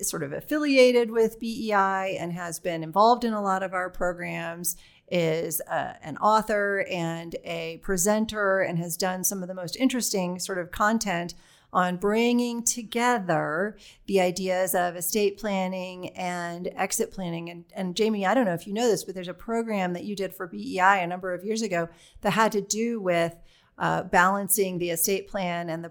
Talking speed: 185 wpm